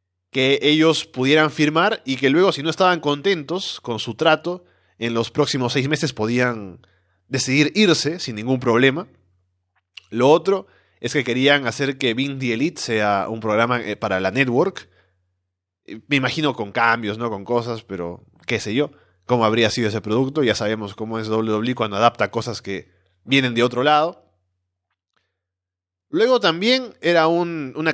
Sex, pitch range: male, 100-135 Hz